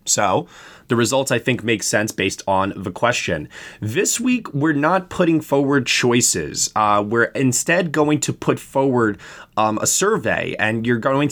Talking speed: 165 wpm